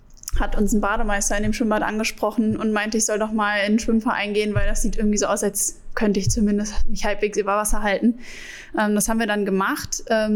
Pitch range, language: 205-235 Hz, German